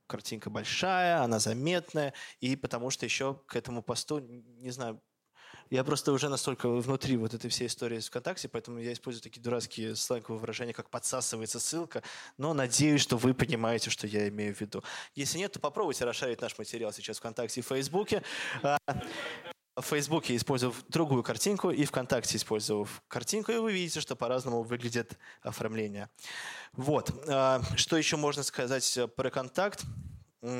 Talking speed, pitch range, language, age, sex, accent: 155 wpm, 115-140 Hz, Russian, 20-39, male, native